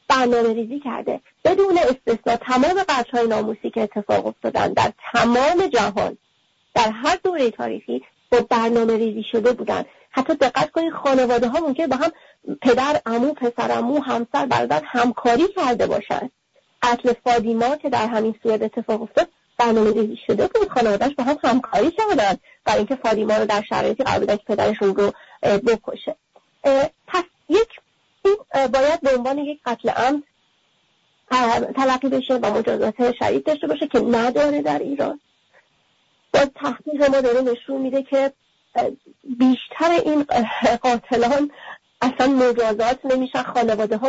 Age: 30-49